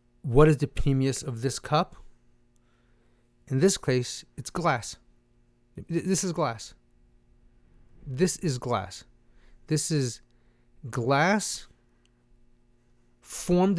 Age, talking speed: 30-49, 95 wpm